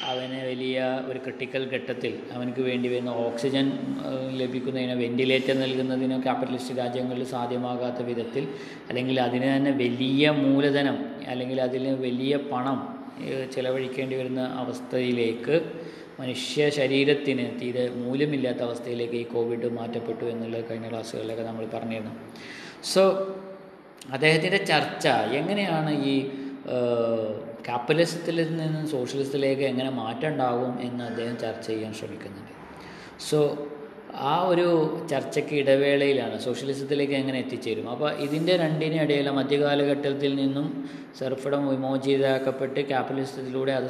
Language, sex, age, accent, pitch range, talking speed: Malayalam, male, 20-39, native, 125-140 Hz, 95 wpm